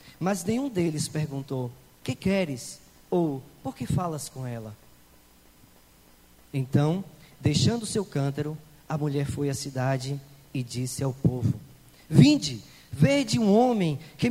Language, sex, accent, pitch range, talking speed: Portuguese, male, Brazilian, 120-175 Hz, 125 wpm